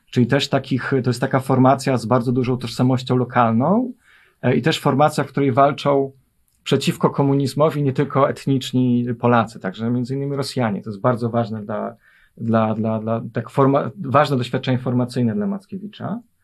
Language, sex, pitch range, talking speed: Polish, male, 120-145 Hz, 160 wpm